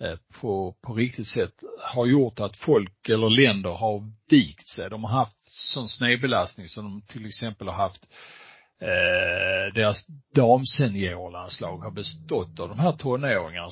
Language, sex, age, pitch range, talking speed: Swedish, male, 50-69, 105-130 Hz, 150 wpm